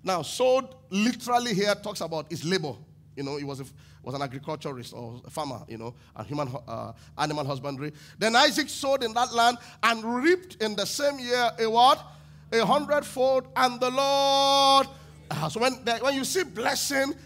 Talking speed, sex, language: 180 wpm, male, English